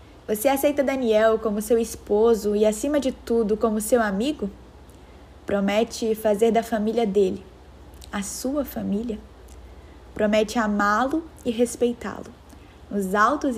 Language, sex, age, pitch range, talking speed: Portuguese, female, 10-29, 195-240 Hz, 120 wpm